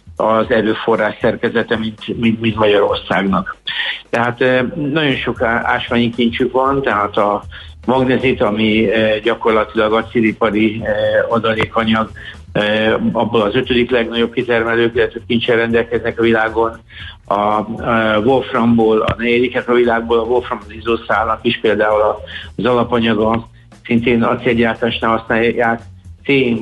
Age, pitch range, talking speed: 60-79, 110-120 Hz, 110 wpm